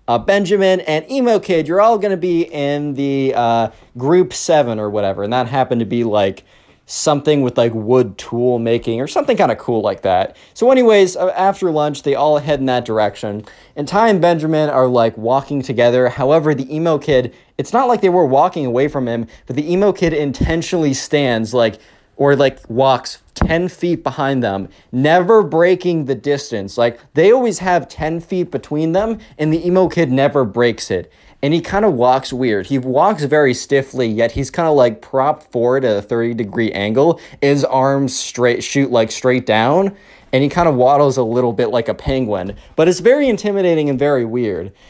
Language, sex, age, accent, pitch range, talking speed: English, male, 20-39, American, 120-165 Hz, 195 wpm